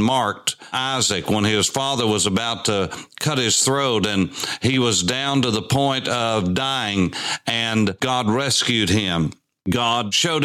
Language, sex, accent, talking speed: English, male, American, 150 wpm